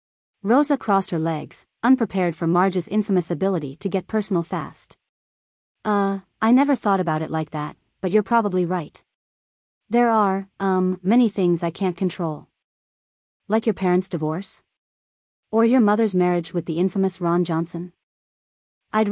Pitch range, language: 160-210 Hz, English